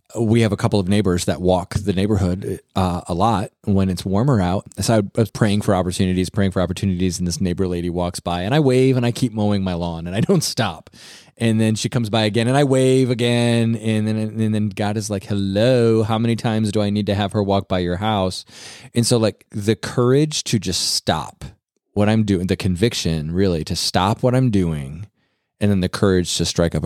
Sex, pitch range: male, 90-115 Hz